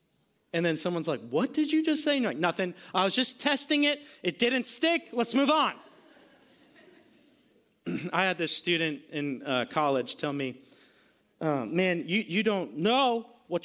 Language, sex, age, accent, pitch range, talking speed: English, male, 30-49, American, 210-310 Hz, 170 wpm